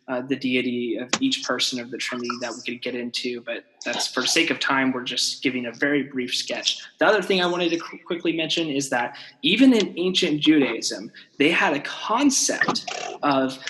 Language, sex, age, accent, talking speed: English, male, 20-39, American, 200 wpm